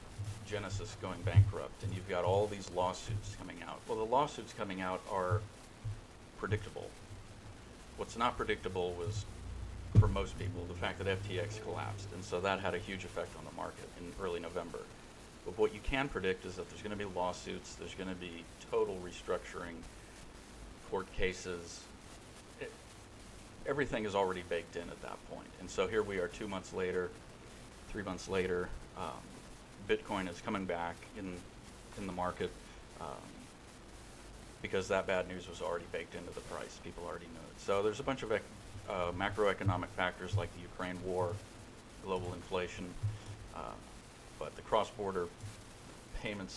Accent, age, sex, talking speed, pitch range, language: American, 40-59, male, 160 wpm, 90-105 Hz, English